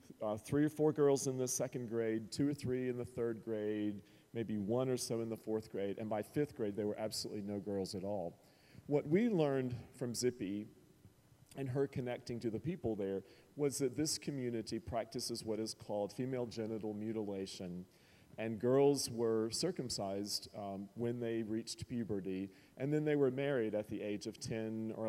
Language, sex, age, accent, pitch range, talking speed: English, male, 40-59, American, 105-130 Hz, 185 wpm